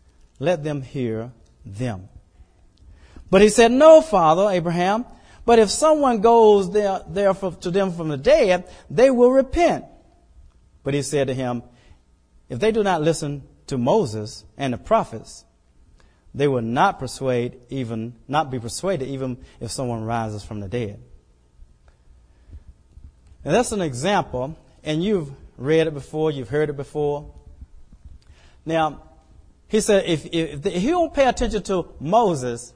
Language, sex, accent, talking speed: English, male, American, 140 wpm